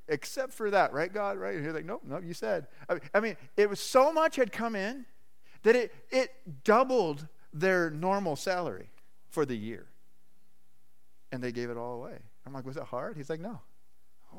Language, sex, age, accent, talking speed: English, male, 40-59, American, 195 wpm